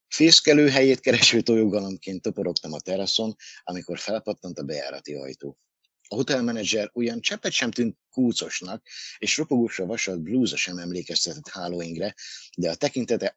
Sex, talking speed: male, 125 wpm